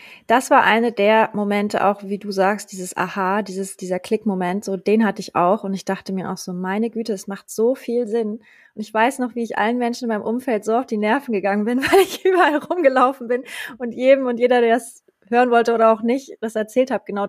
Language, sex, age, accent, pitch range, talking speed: German, female, 20-39, German, 195-230 Hz, 245 wpm